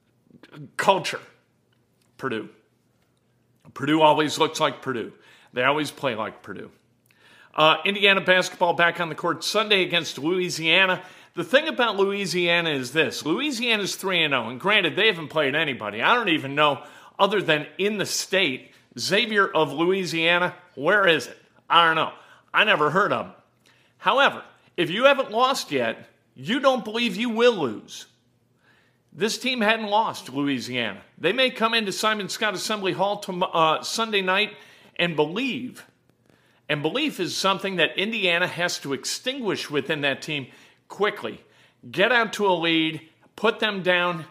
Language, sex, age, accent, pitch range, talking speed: English, male, 40-59, American, 150-205 Hz, 150 wpm